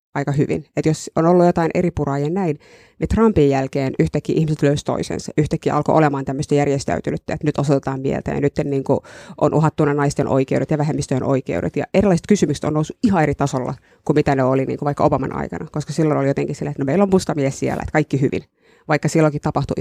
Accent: native